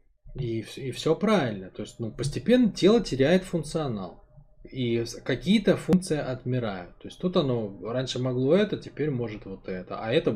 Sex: male